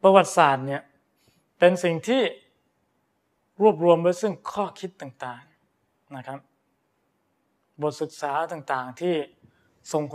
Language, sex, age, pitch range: Thai, male, 20-39, 135-165 Hz